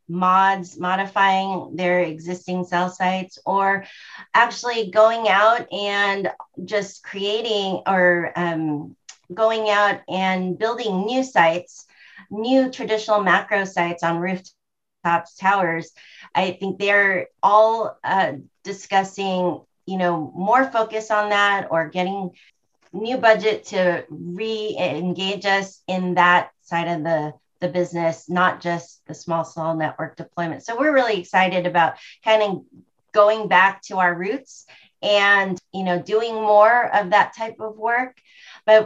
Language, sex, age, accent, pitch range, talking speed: English, female, 30-49, American, 175-210 Hz, 130 wpm